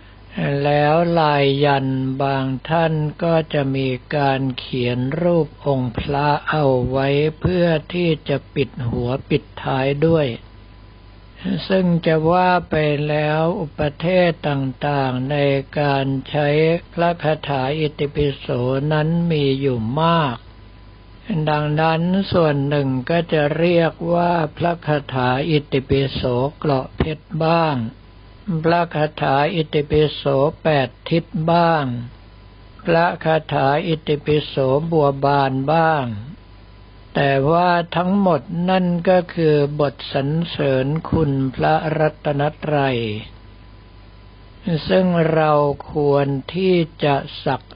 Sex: male